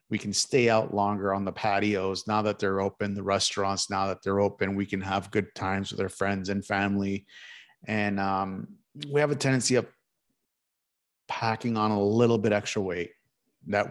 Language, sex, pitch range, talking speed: English, male, 95-115 Hz, 185 wpm